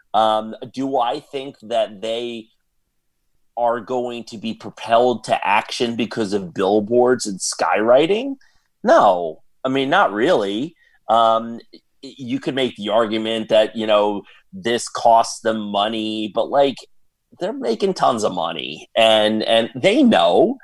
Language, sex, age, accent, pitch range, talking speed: English, male, 30-49, American, 100-125 Hz, 135 wpm